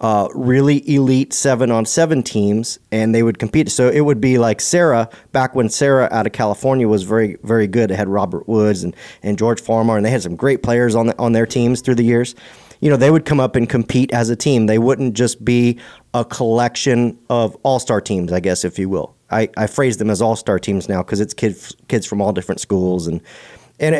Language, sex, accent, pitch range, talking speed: English, male, American, 105-125 Hz, 225 wpm